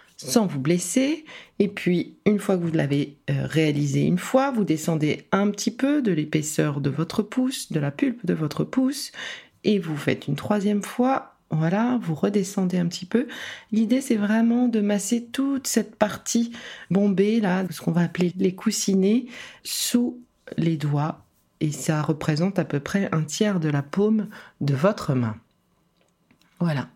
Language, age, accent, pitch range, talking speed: French, 40-59, French, 160-220 Hz, 165 wpm